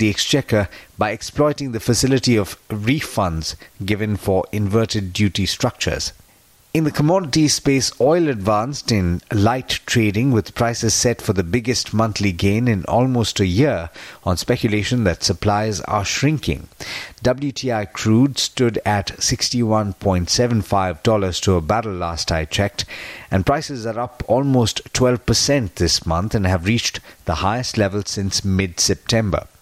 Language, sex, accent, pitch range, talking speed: English, male, Indian, 100-125 Hz, 135 wpm